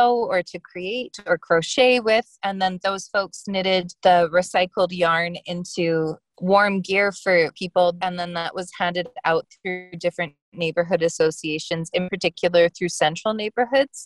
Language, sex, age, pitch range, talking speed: English, female, 20-39, 170-195 Hz, 145 wpm